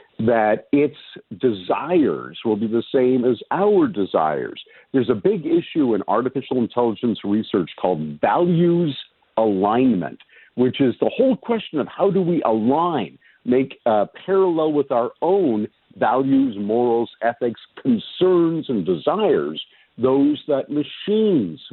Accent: American